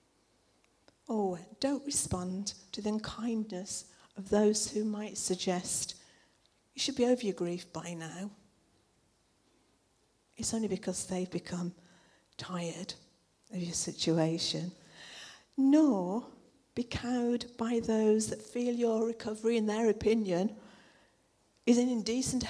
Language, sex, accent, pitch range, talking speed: English, female, British, 180-230 Hz, 115 wpm